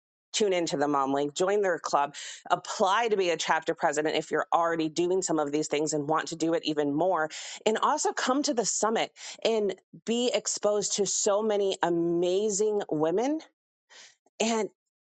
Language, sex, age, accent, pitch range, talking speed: English, female, 30-49, American, 165-220 Hz, 175 wpm